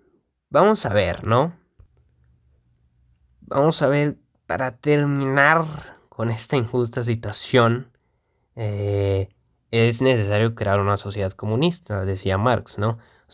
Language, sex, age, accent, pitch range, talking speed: Spanish, male, 20-39, Mexican, 100-130 Hz, 110 wpm